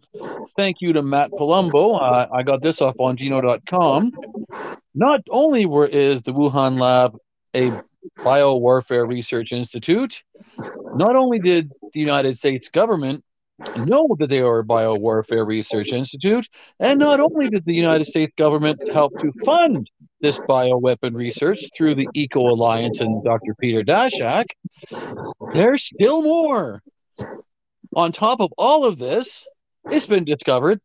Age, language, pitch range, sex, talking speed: 50-69, English, 125-205 Hz, male, 140 wpm